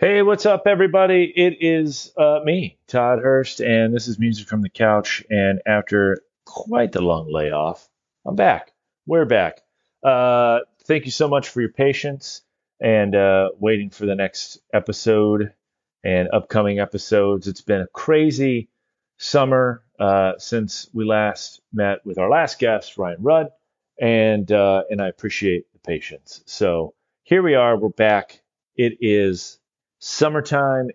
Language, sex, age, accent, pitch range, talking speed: English, male, 30-49, American, 95-125 Hz, 150 wpm